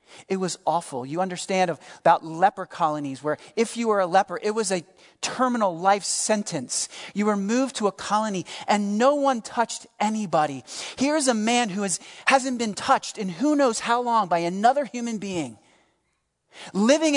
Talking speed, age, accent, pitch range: 170 wpm, 40-59, American, 165-250 Hz